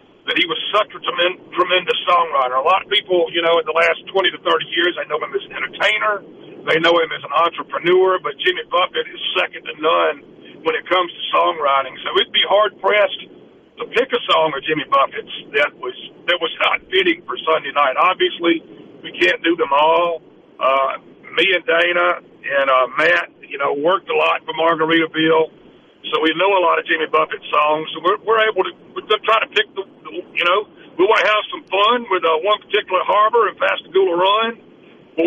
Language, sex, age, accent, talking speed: English, male, 50-69, American, 210 wpm